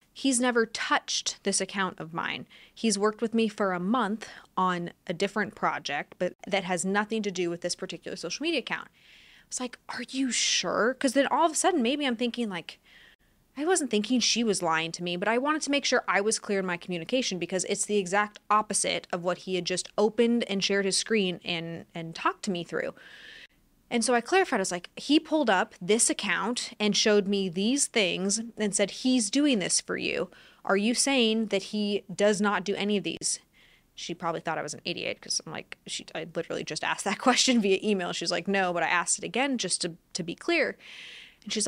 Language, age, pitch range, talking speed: English, 20-39, 185-245 Hz, 225 wpm